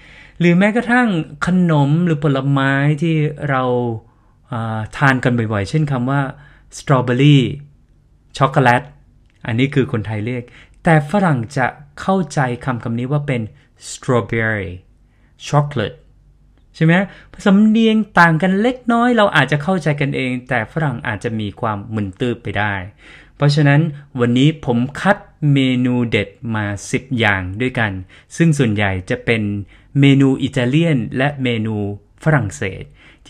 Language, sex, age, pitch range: Thai, male, 20-39, 115-155 Hz